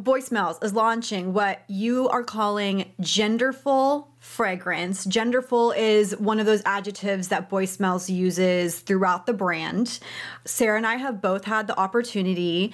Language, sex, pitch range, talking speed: English, female, 190-235 Hz, 145 wpm